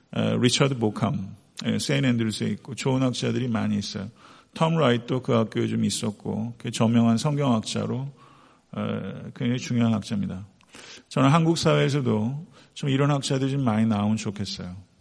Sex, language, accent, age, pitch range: male, Korean, native, 50-69, 115-145 Hz